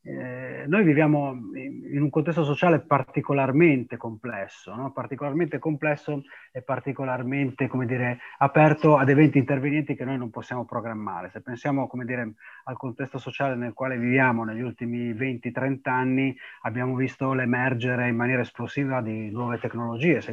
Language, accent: Italian, native